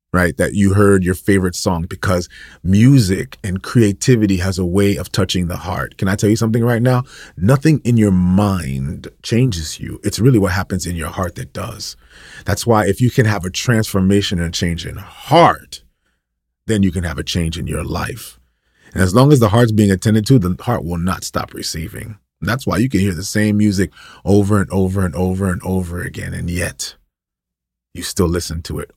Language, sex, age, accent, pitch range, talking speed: English, male, 30-49, American, 80-105 Hz, 205 wpm